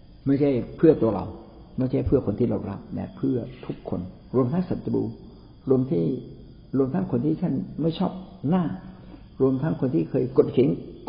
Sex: male